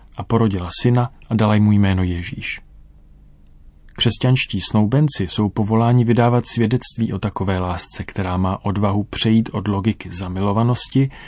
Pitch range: 95-115 Hz